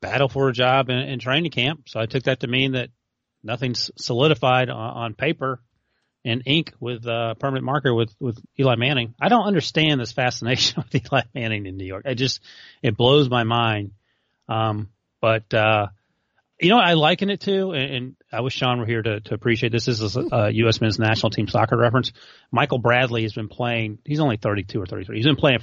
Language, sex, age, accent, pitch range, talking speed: English, male, 30-49, American, 110-140 Hz, 220 wpm